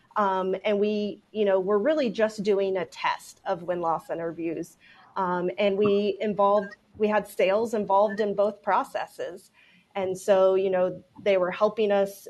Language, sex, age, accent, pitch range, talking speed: English, female, 30-49, American, 185-215 Hz, 160 wpm